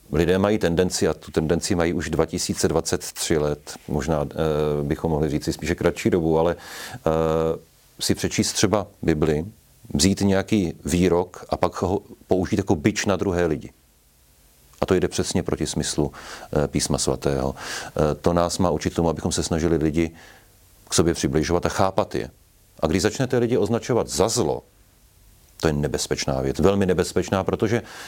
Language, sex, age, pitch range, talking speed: Czech, male, 40-59, 80-95 Hz, 155 wpm